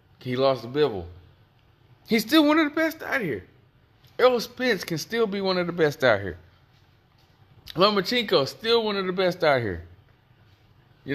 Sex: male